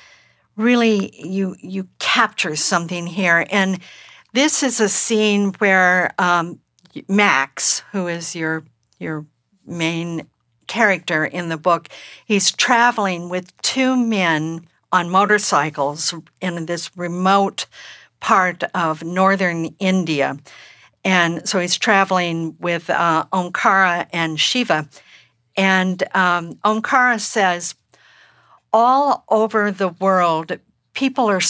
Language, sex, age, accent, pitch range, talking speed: English, female, 50-69, American, 165-205 Hz, 105 wpm